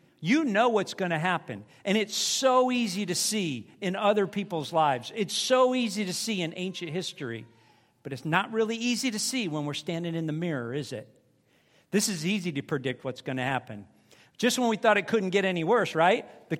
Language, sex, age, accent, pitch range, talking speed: English, male, 50-69, American, 155-245 Hz, 215 wpm